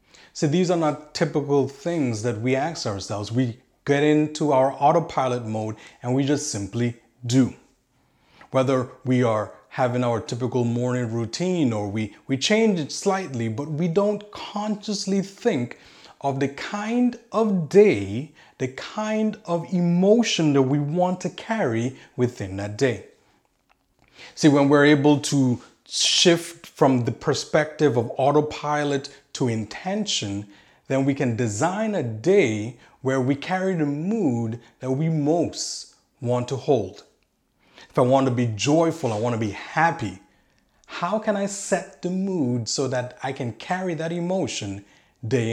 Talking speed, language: 150 wpm, English